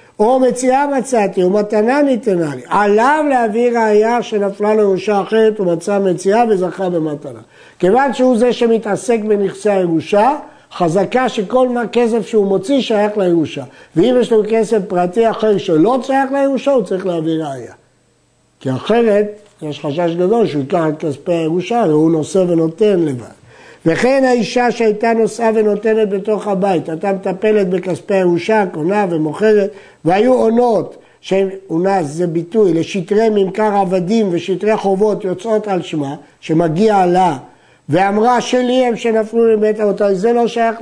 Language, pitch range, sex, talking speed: Hebrew, 180-230 Hz, male, 145 wpm